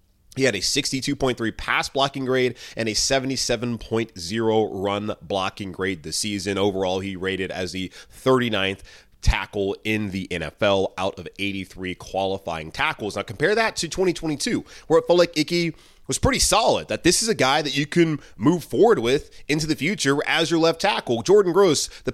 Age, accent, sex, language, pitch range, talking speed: 30-49, American, male, English, 100-165 Hz, 175 wpm